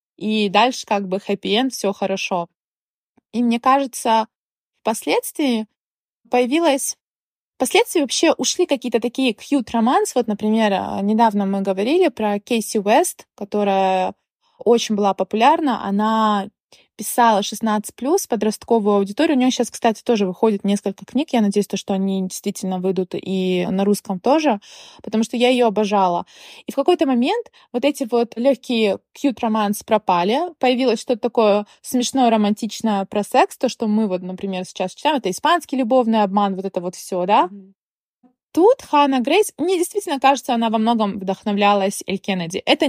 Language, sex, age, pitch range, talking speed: Russian, female, 20-39, 195-250 Hz, 150 wpm